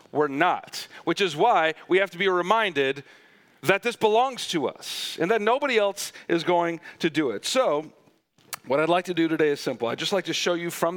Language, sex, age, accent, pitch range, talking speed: English, male, 40-59, American, 135-180 Hz, 220 wpm